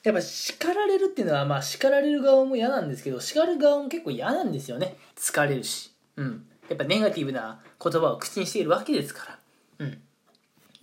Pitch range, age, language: 170-270 Hz, 20-39, Japanese